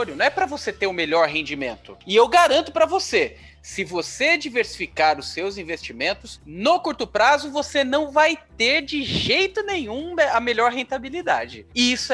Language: Portuguese